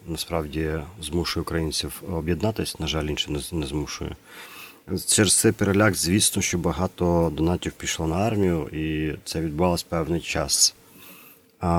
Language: Ukrainian